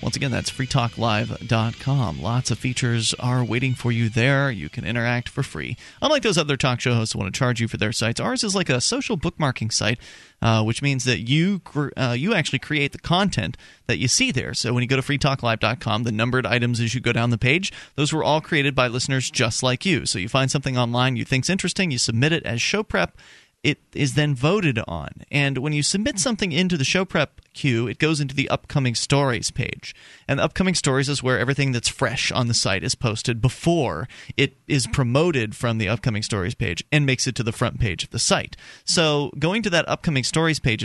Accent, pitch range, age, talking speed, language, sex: American, 115-145 Hz, 30-49, 225 wpm, English, male